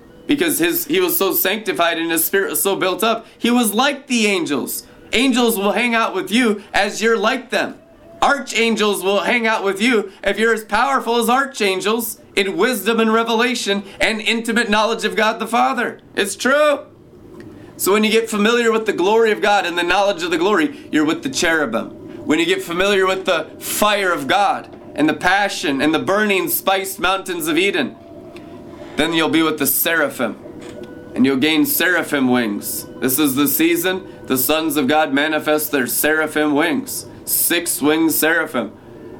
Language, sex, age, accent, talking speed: English, male, 30-49, American, 180 wpm